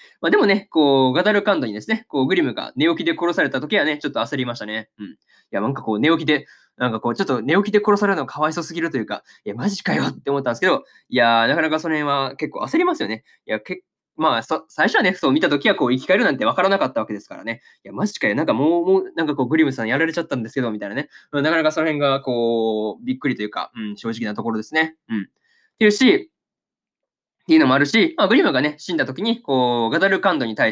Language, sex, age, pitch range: Japanese, male, 20-39, 130-205 Hz